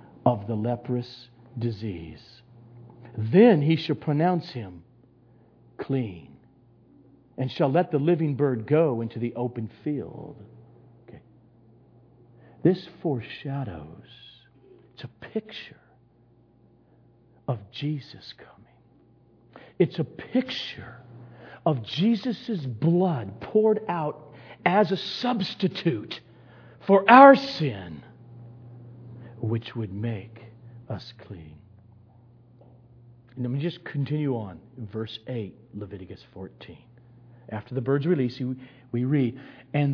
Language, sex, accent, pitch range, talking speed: English, male, American, 120-170 Hz, 95 wpm